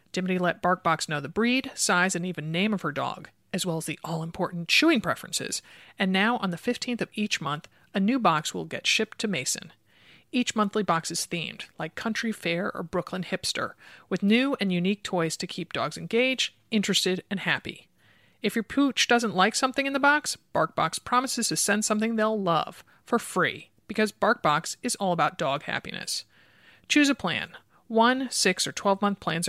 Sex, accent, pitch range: male, American, 170-235 Hz